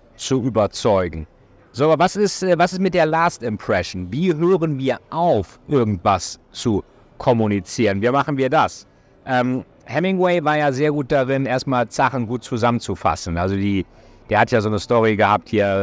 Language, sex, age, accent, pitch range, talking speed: German, male, 50-69, German, 105-135 Hz, 165 wpm